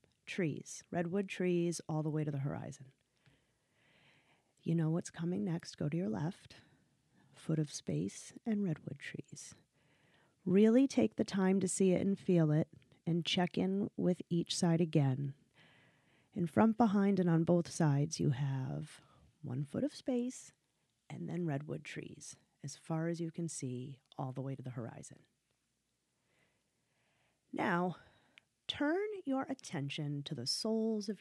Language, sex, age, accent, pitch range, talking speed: English, female, 30-49, American, 150-210 Hz, 150 wpm